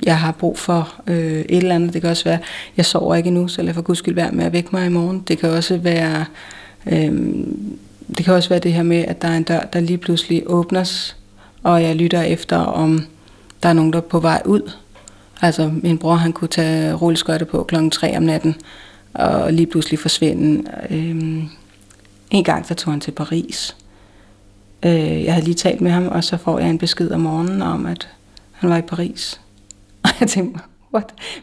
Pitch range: 160-180 Hz